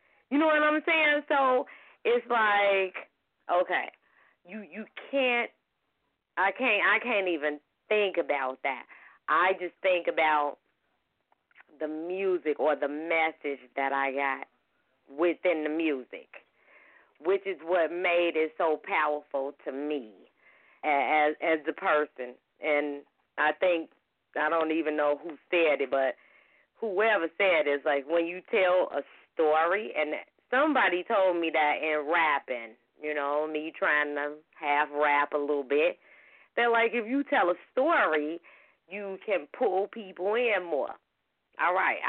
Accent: American